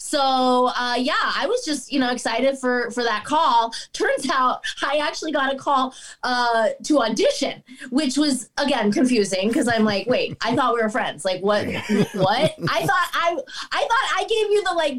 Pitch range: 235-300 Hz